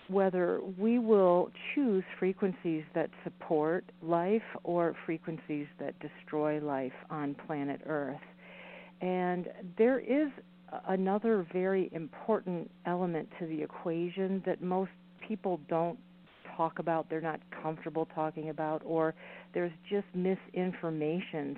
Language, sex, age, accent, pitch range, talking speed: English, female, 50-69, American, 160-200 Hz, 115 wpm